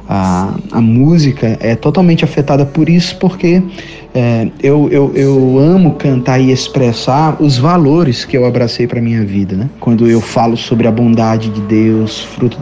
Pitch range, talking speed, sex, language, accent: 115-135 Hz, 165 wpm, male, Portuguese, Brazilian